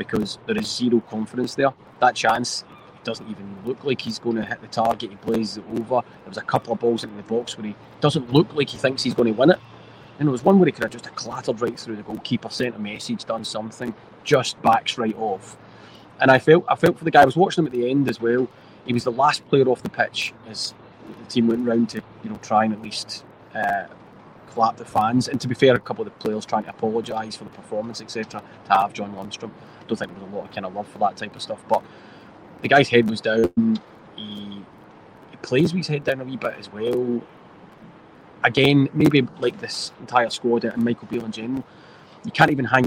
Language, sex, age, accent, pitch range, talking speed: English, male, 30-49, British, 110-140 Hz, 240 wpm